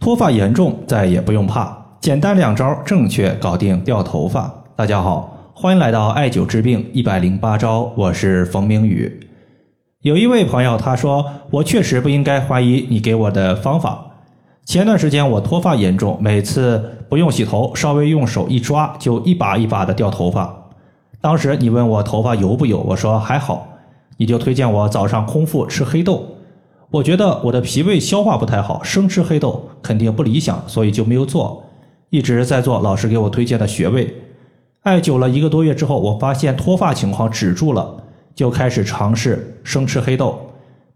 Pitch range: 110-150 Hz